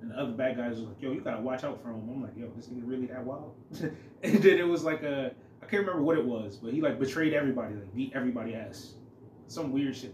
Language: English